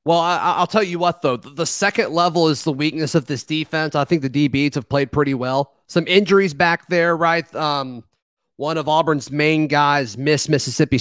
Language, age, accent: English, 30-49, American